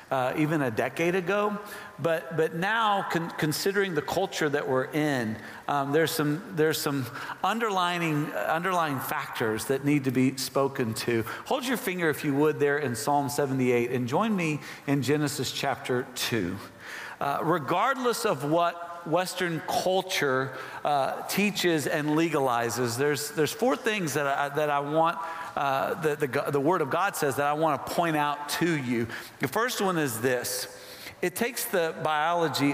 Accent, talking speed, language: American, 165 wpm, English